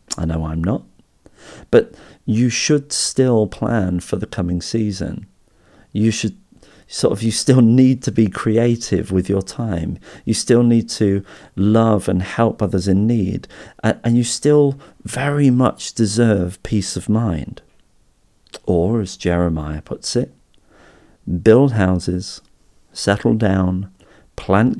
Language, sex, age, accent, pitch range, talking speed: English, male, 40-59, British, 90-115 Hz, 135 wpm